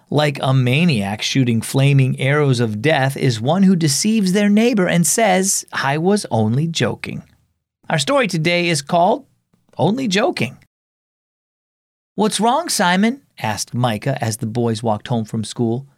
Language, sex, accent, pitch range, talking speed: English, male, American, 120-185 Hz, 145 wpm